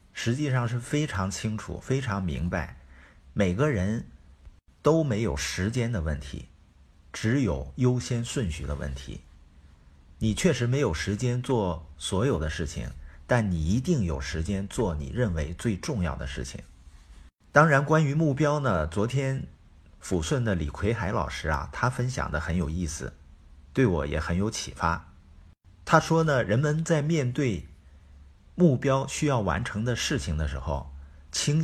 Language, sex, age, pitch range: Chinese, male, 50-69, 75-120 Hz